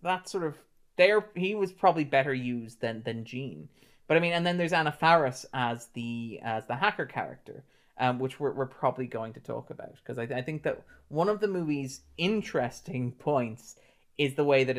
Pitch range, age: 120-150 Hz, 20-39